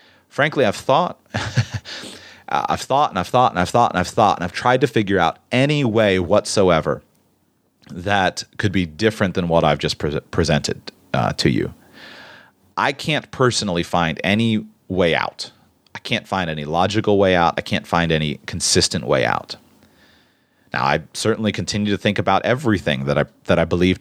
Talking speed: 175 wpm